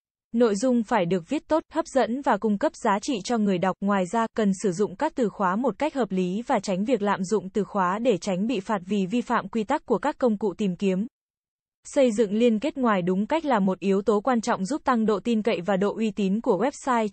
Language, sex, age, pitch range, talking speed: Vietnamese, female, 10-29, 200-250 Hz, 260 wpm